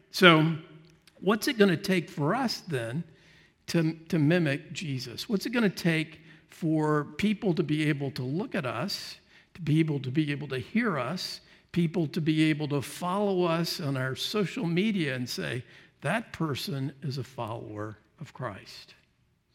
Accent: American